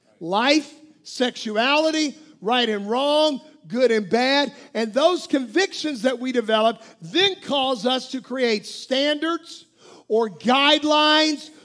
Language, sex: English, male